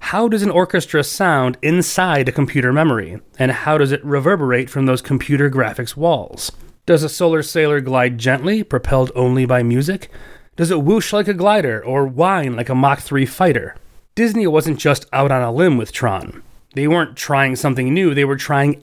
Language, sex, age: English, male, 30-49